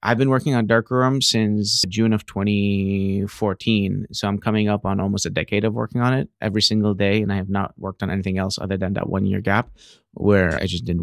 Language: English